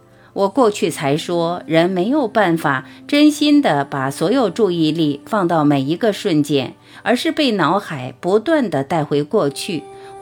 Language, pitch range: Chinese, 150-225 Hz